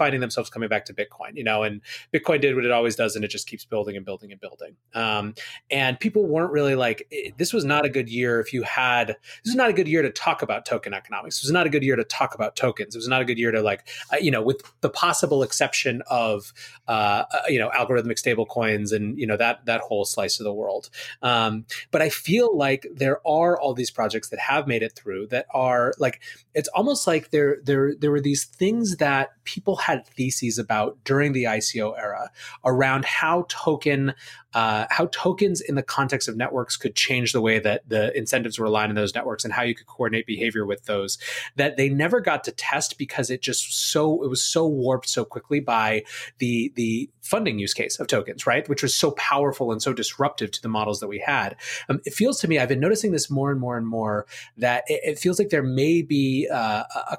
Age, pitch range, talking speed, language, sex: 30-49, 115-145 Hz, 230 wpm, English, male